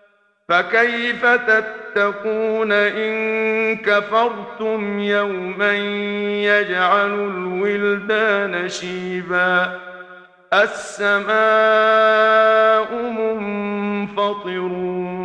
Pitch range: 205-225 Hz